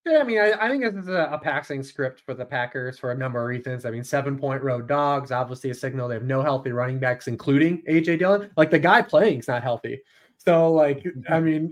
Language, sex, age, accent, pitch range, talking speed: English, male, 20-39, American, 130-170 Hz, 245 wpm